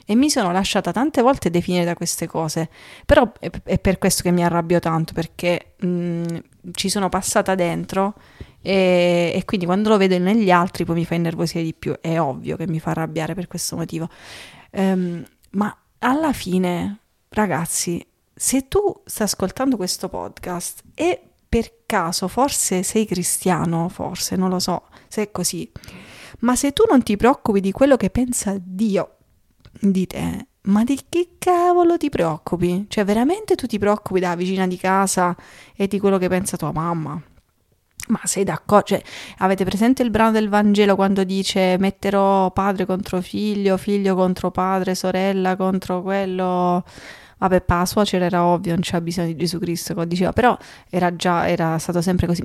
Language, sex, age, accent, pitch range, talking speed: Italian, female, 30-49, native, 175-210 Hz, 165 wpm